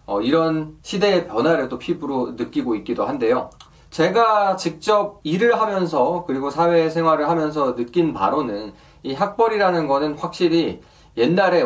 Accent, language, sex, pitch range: native, Korean, male, 140-205 Hz